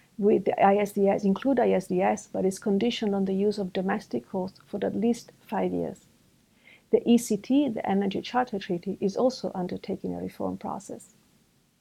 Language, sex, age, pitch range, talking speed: English, female, 50-69, 195-235 Hz, 160 wpm